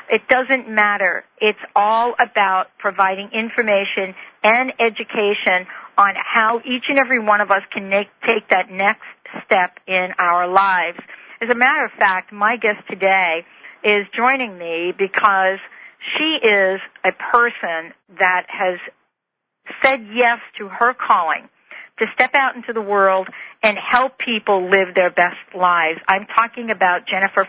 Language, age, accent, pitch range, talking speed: English, 50-69, American, 190-240 Hz, 145 wpm